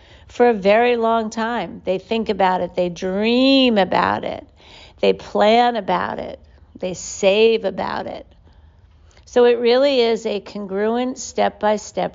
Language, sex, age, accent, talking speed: English, female, 50-69, American, 140 wpm